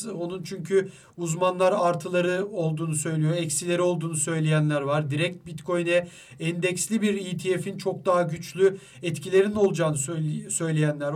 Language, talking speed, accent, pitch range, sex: Turkish, 115 wpm, native, 155-195 Hz, male